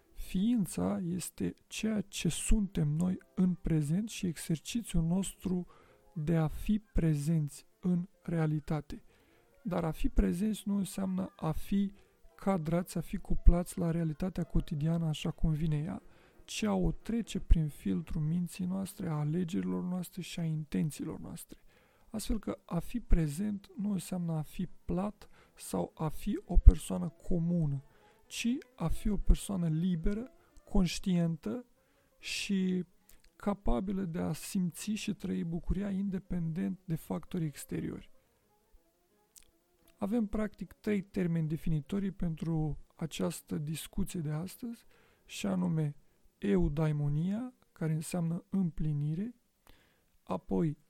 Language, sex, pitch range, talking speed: Romanian, male, 160-195 Hz, 120 wpm